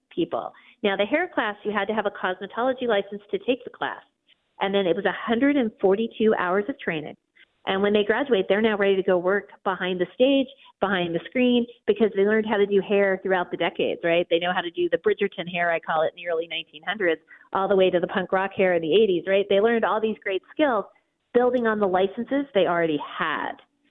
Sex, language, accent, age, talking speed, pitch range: female, English, American, 30-49, 230 wpm, 180-230 Hz